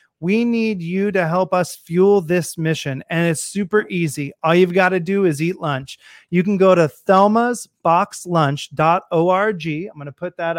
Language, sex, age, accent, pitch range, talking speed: English, male, 30-49, American, 155-190 Hz, 175 wpm